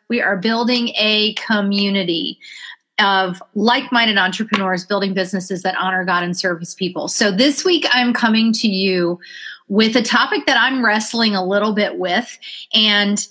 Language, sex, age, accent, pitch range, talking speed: English, female, 30-49, American, 190-240 Hz, 160 wpm